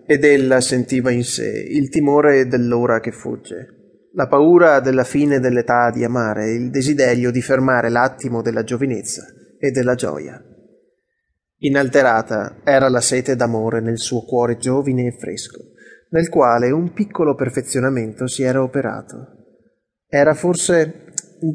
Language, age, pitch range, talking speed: Italian, 20-39, 120-150 Hz, 135 wpm